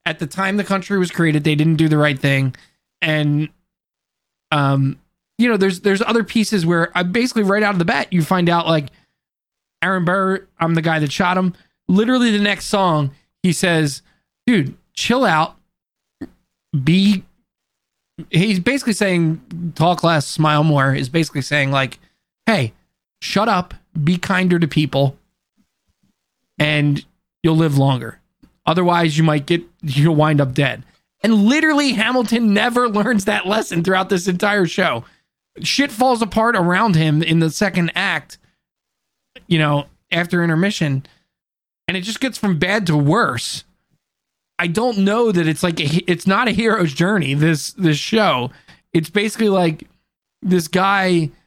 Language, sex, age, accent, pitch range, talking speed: English, male, 20-39, American, 155-195 Hz, 155 wpm